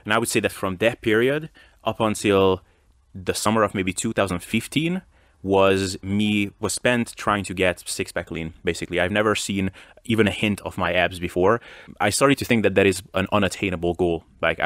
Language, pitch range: English, 90-105 Hz